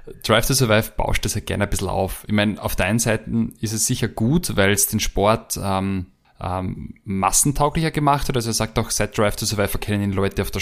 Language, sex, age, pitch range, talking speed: German, male, 20-39, 100-115 Hz, 220 wpm